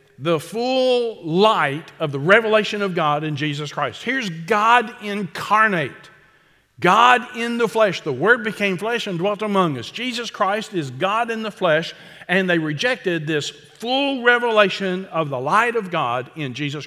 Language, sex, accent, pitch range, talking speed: English, male, American, 125-180 Hz, 165 wpm